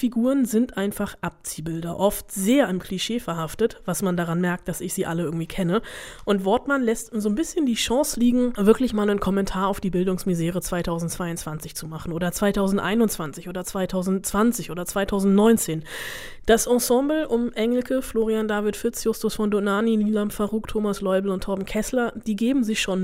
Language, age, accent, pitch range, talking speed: German, 20-39, German, 185-230 Hz, 170 wpm